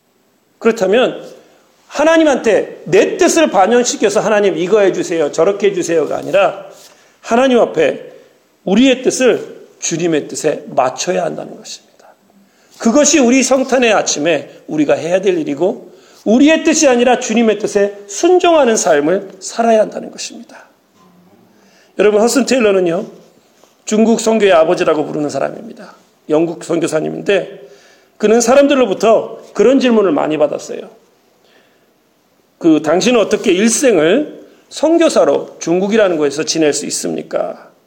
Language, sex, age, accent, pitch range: Korean, male, 40-59, native, 190-280 Hz